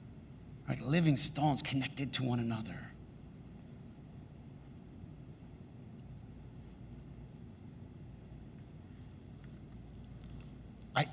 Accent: American